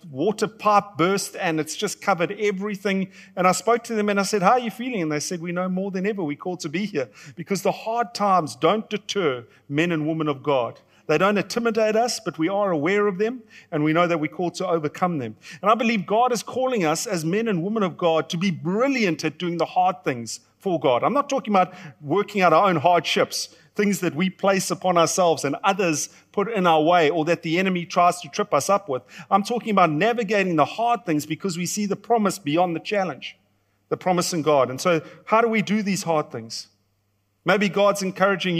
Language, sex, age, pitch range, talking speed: English, male, 40-59, 160-205 Hz, 230 wpm